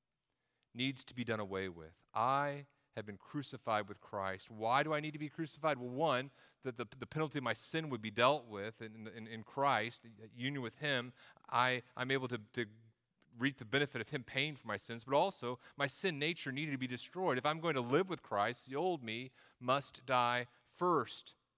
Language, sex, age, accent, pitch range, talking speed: English, male, 30-49, American, 115-145 Hz, 205 wpm